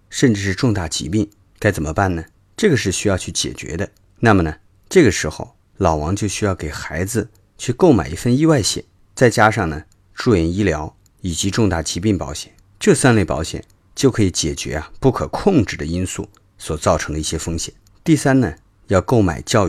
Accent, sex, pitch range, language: native, male, 85-110 Hz, Chinese